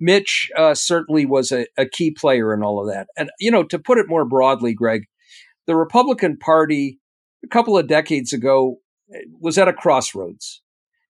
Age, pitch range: 50-69, 145-195 Hz